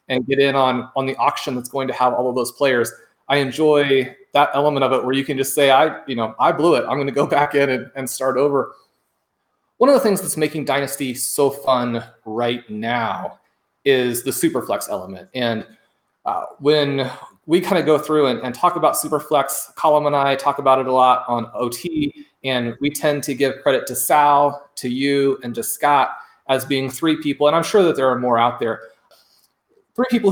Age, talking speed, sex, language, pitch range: 30-49, 210 wpm, male, English, 130-150 Hz